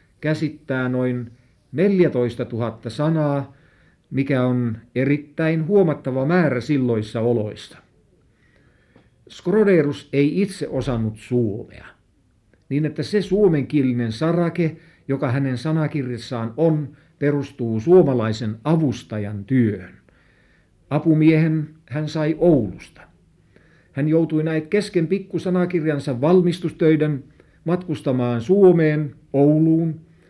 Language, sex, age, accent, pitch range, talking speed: Finnish, male, 60-79, native, 125-160 Hz, 85 wpm